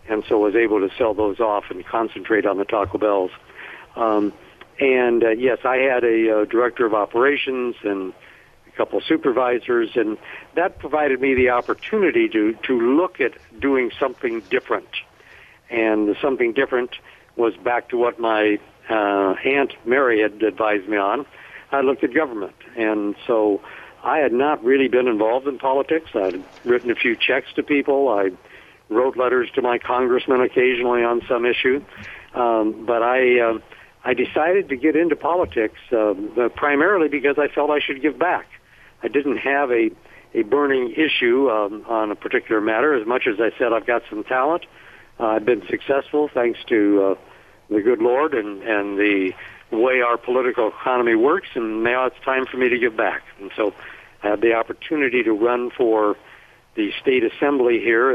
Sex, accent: male, American